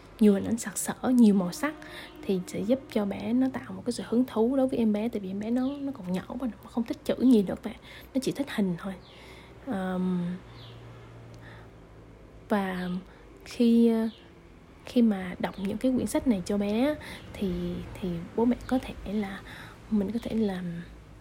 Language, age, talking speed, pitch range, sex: Vietnamese, 20-39, 190 wpm, 200-250 Hz, female